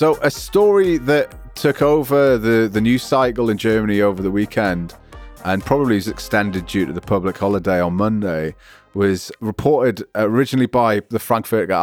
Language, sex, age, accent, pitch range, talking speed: English, male, 30-49, British, 95-115 Hz, 160 wpm